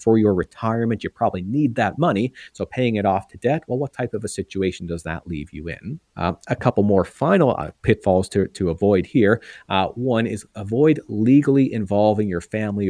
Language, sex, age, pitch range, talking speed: English, male, 40-59, 95-115 Hz, 205 wpm